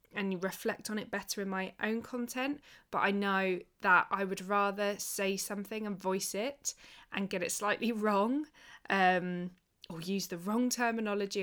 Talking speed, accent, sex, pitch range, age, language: 175 wpm, British, female, 185-225 Hz, 20-39, English